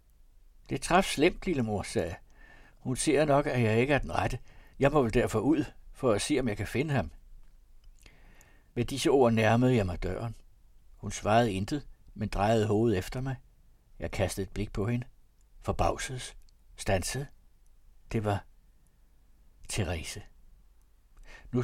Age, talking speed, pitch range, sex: 60-79, 155 wpm, 90-120 Hz, male